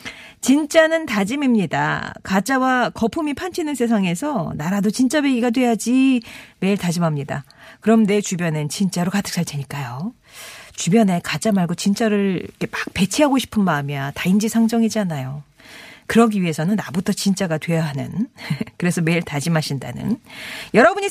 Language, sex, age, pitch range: Korean, female, 40-59, 170-280 Hz